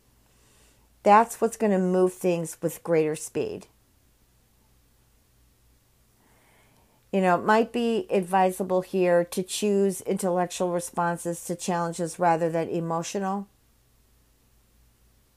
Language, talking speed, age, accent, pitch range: English, 100 wpm, 50-69, American, 170-205 Hz